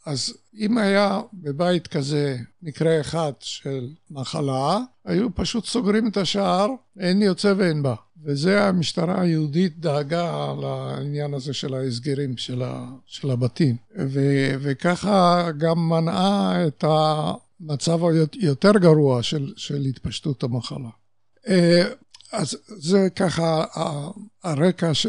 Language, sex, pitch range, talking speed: Hebrew, male, 140-180 Hz, 110 wpm